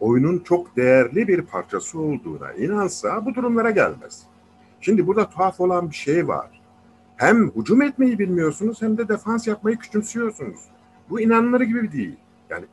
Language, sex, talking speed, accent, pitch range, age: Turkish, male, 145 wpm, native, 145-245 Hz, 50-69